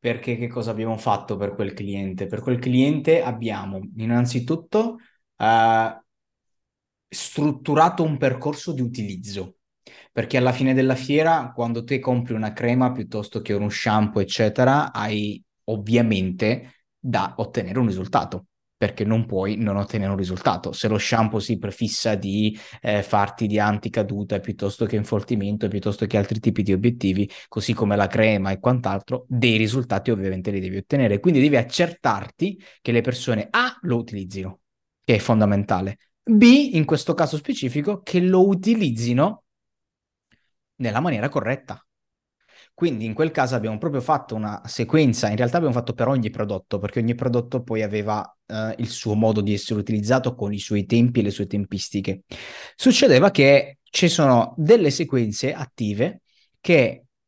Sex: male